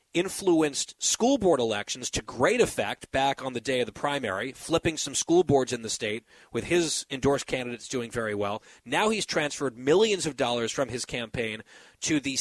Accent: American